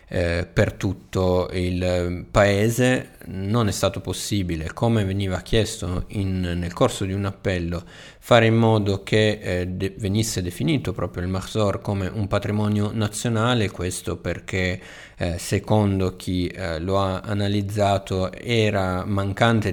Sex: male